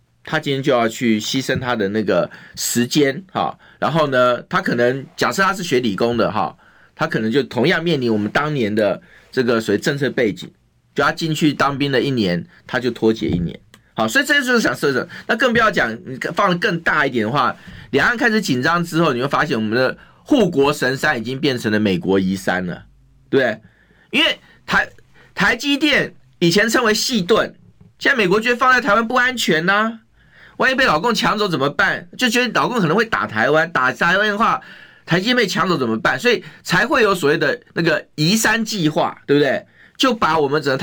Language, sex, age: Chinese, male, 30-49